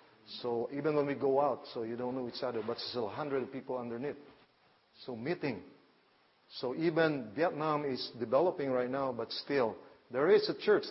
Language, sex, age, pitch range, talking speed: English, male, 40-59, 125-140 Hz, 180 wpm